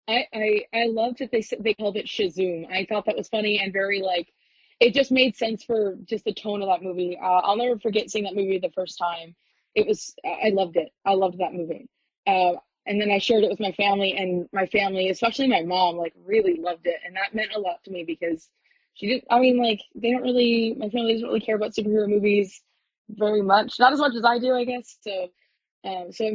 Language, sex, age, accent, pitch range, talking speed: English, female, 20-39, American, 185-235 Hz, 240 wpm